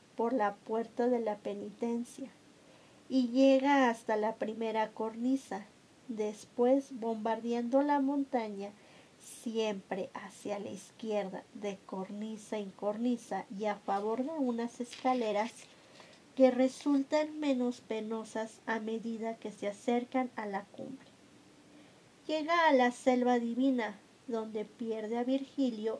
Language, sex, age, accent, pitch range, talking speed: Spanish, female, 40-59, American, 220-270 Hz, 120 wpm